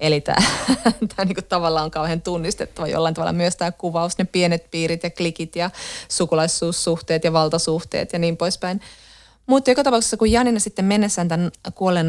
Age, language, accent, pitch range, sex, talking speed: 30-49, Finnish, native, 155-195 Hz, female, 165 wpm